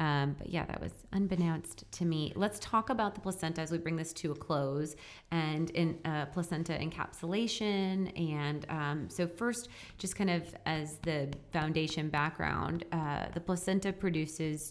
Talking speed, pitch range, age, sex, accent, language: 165 wpm, 145-170 Hz, 30-49, female, American, English